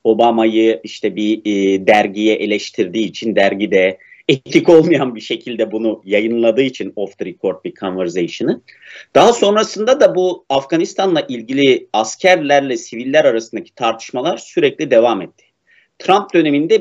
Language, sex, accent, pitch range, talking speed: Turkish, male, native, 110-175 Hz, 130 wpm